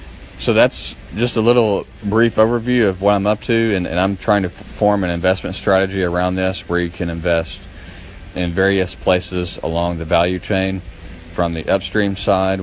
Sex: male